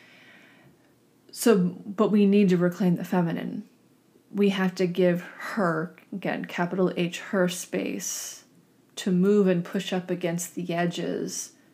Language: English